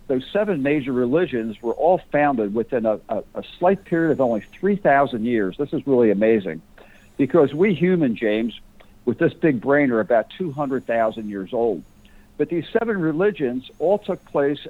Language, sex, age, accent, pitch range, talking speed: English, male, 60-79, American, 120-155 Hz, 165 wpm